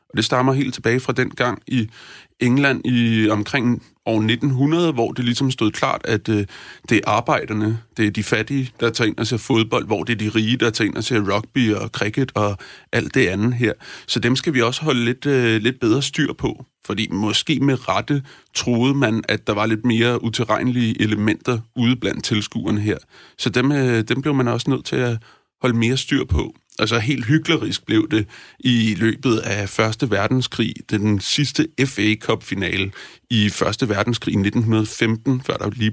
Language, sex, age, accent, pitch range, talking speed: Danish, male, 30-49, native, 105-125 Hz, 185 wpm